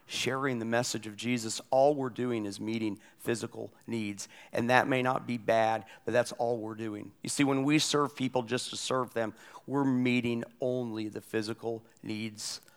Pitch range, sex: 115-140 Hz, male